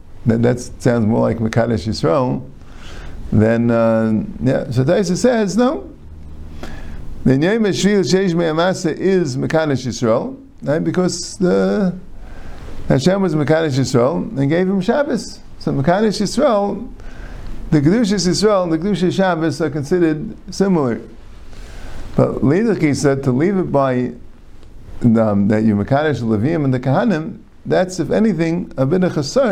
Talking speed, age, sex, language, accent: 135 wpm, 50-69, male, English, American